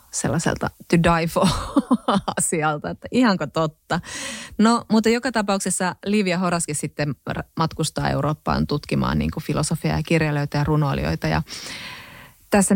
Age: 30-49